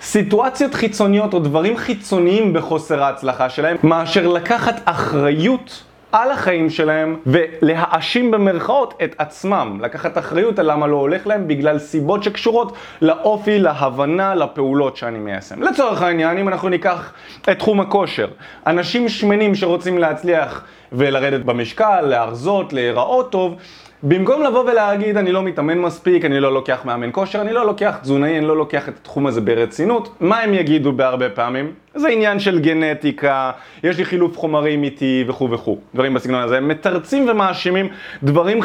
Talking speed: 150 wpm